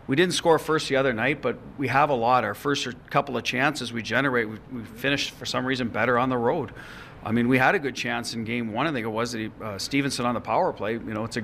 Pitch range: 115-135 Hz